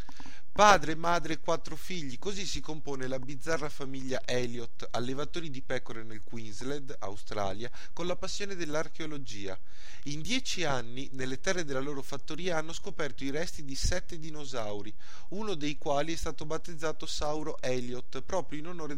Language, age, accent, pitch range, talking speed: Italian, 30-49, native, 120-160 Hz, 150 wpm